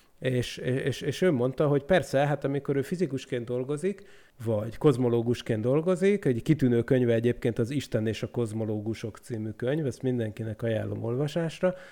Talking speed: 150 wpm